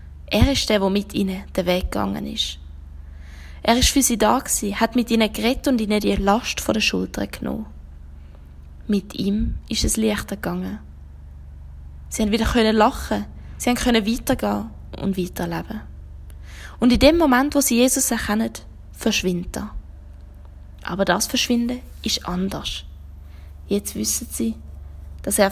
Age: 20-39